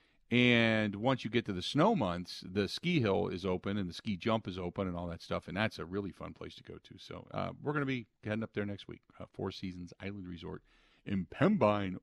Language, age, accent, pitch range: English, 50-69, American, 90-115 Hz